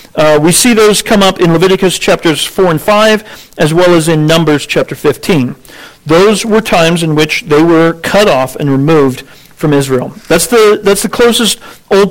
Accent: American